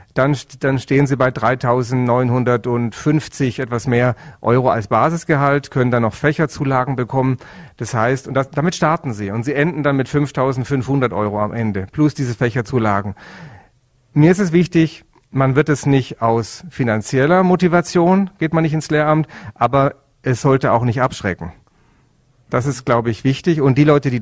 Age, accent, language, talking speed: 40-59, German, German, 165 wpm